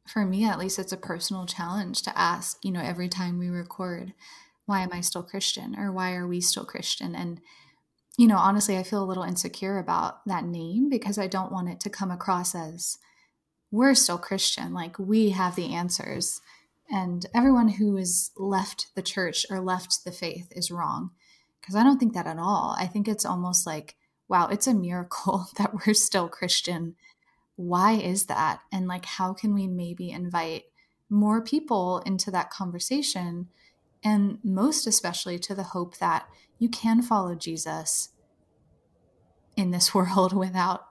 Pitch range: 175-205 Hz